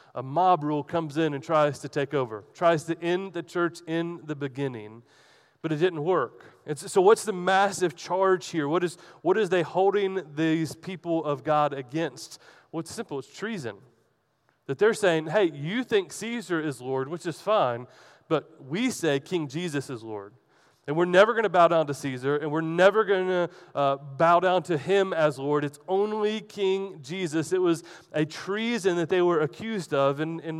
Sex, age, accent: male, 30-49, American